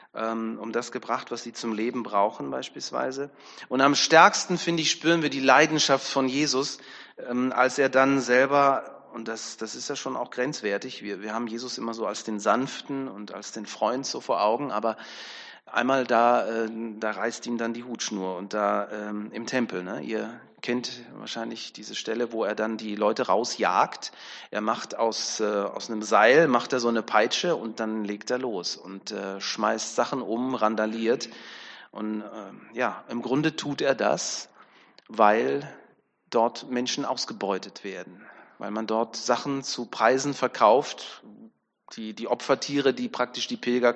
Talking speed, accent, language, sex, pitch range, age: 170 wpm, German, German, male, 110-135 Hz, 30-49